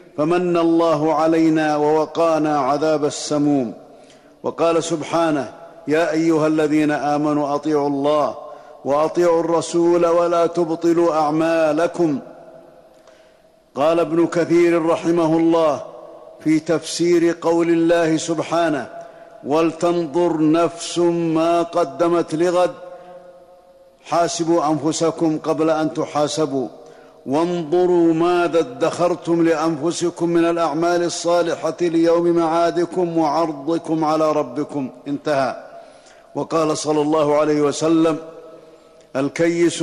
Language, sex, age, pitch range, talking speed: Arabic, male, 50-69, 155-170 Hz, 85 wpm